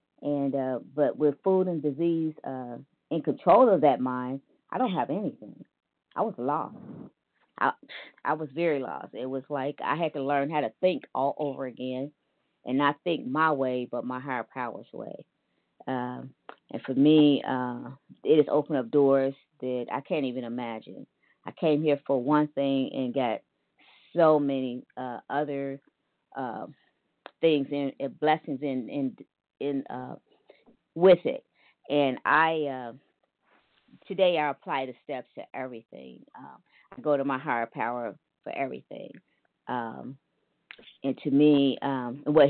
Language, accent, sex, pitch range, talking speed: English, American, female, 130-155 Hz, 155 wpm